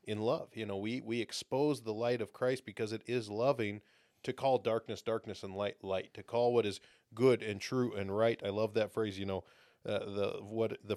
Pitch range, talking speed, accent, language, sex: 100-120 Hz, 225 wpm, American, English, male